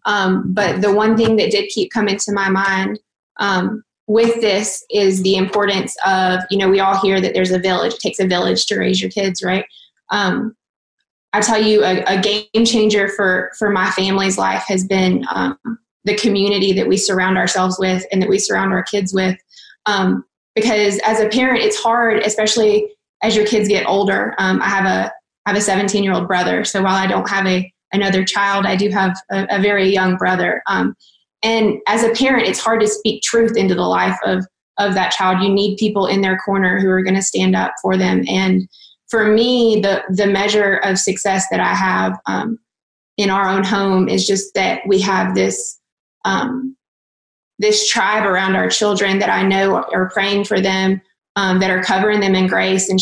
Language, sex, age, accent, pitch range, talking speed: English, female, 20-39, American, 190-215 Hz, 205 wpm